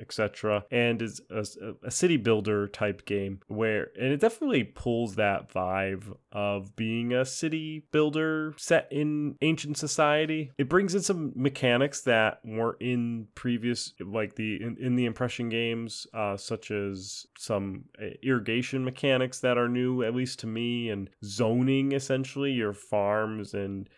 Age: 20-39